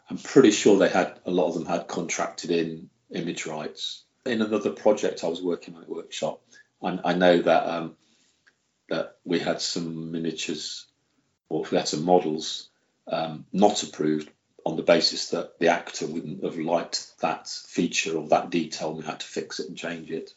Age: 40-59